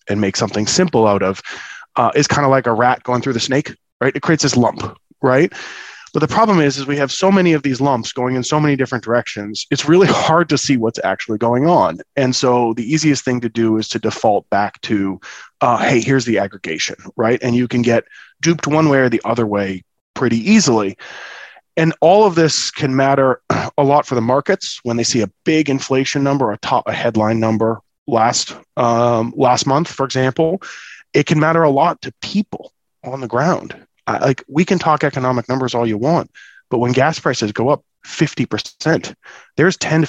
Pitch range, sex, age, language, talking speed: 120-155 Hz, male, 30-49, English, 210 wpm